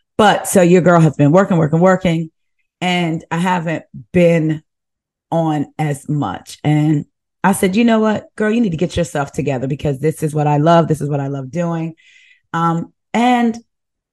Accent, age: American, 30-49